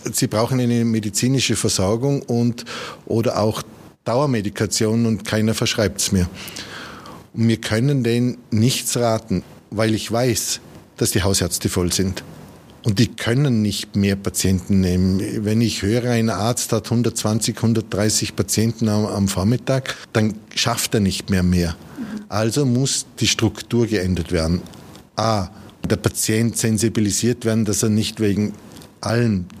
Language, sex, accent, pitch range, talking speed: German, male, Austrian, 100-120 Hz, 135 wpm